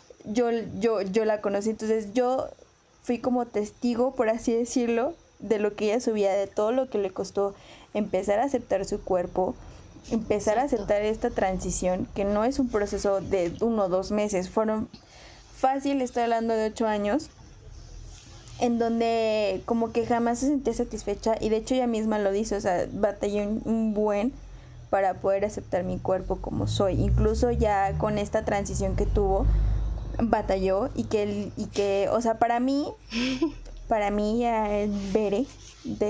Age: 20-39